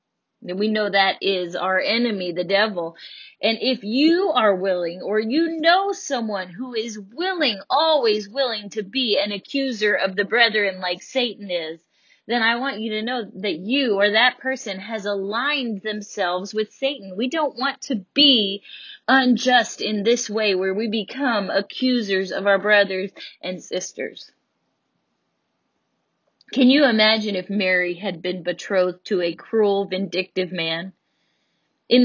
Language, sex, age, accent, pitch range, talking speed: English, female, 30-49, American, 195-255 Hz, 150 wpm